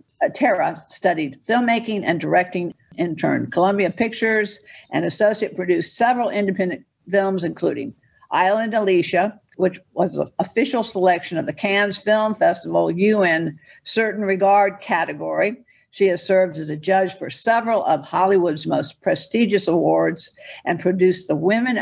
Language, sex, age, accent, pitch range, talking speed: English, female, 60-79, American, 170-210 Hz, 135 wpm